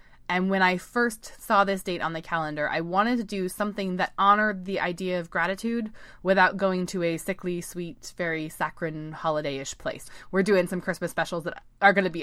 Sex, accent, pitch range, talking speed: female, American, 150-185 Hz, 200 wpm